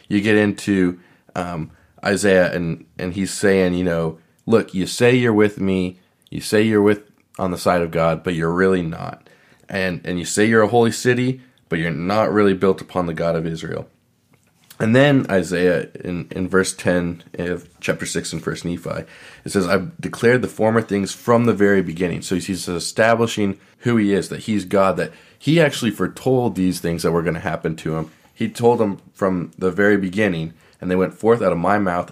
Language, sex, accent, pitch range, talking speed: English, male, American, 90-105 Hz, 205 wpm